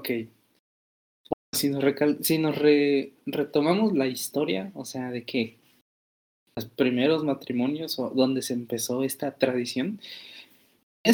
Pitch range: 120-150 Hz